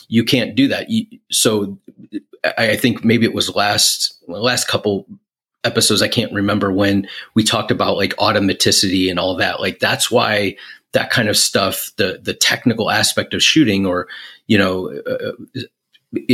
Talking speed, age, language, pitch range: 160 wpm, 30-49, English, 100-115 Hz